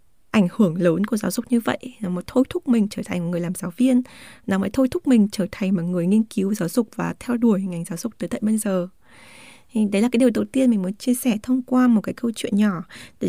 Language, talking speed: Vietnamese, 280 wpm